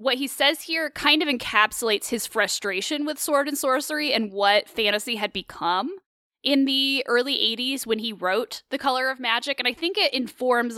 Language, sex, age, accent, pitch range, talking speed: English, female, 20-39, American, 215-280 Hz, 190 wpm